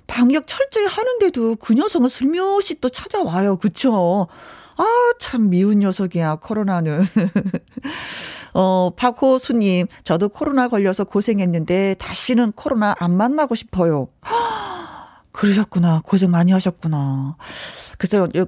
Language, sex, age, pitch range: Korean, female, 40-59, 185-260 Hz